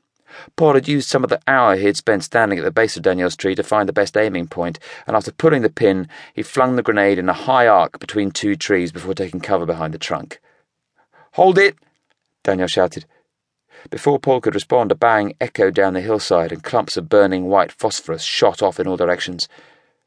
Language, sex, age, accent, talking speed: English, male, 30-49, British, 210 wpm